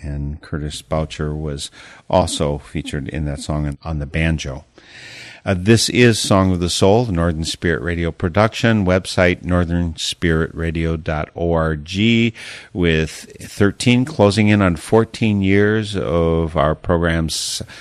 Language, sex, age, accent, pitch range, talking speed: English, male, 50-69, American, 80-95 Hz, 120 wpm